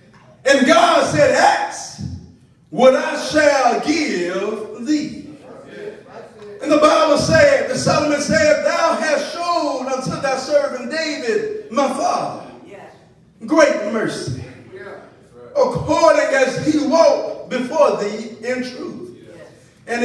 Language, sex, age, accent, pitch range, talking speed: English, male, 40-59, American, 255-300 Hz, 110 wpm